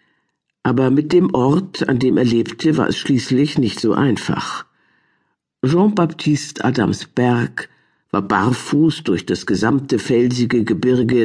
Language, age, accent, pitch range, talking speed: German, 50-69, German, 110-135 Hz, 125 wpm